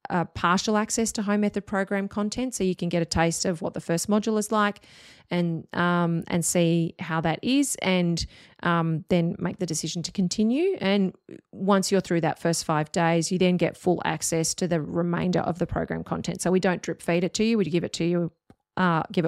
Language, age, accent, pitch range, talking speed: English, 30-49, Australian, 165-195 Hz, 220 wpm